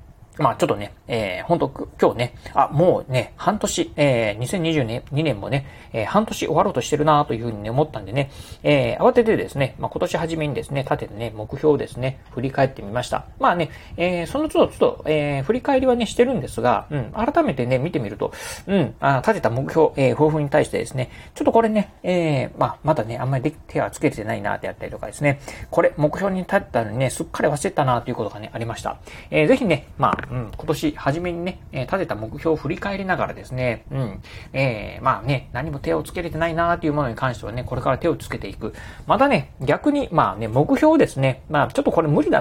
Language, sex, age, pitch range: Japanese, male, 40-59, 120-170 Hz